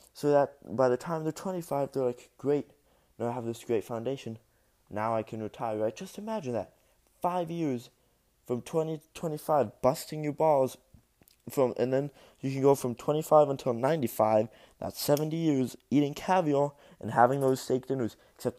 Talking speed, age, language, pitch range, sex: 180 wpm, 20-39, English, 105-135 Hz, male